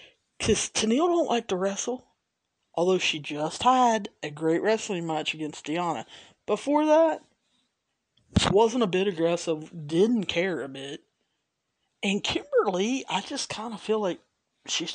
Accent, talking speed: American, 140 wpm